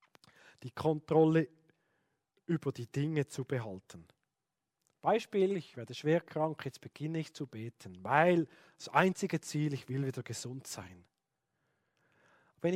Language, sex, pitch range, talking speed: German, male, 145-200 Hz, 125 wpm